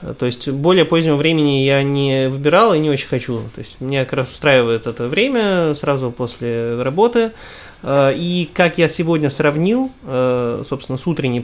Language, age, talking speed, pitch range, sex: Russian, 20-39, 165 wpm, 125-160 Hz, male